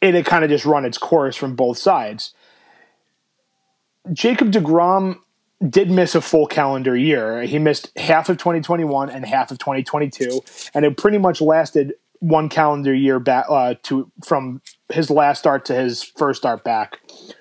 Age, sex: 30-49, male